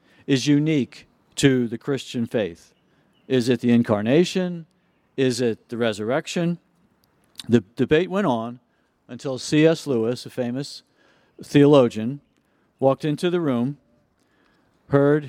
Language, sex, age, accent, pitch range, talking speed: English, male, 50-69, American, 120-155 Hz, 115 wpm